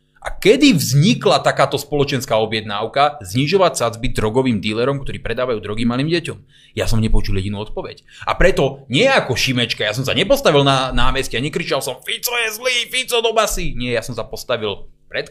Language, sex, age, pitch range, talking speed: Slovak, male, 30-49, 110-145 Hz, 175 wpm